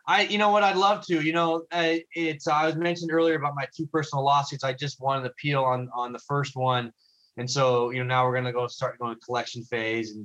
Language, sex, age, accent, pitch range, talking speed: English, male, 20-39, American, 115-140 Hz, 265 wpm